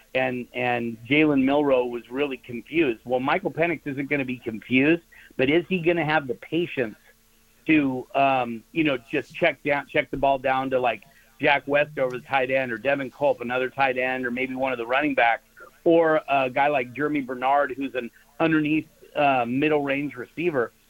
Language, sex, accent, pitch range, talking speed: English, male, American, 130-155 Hz, 195 wpm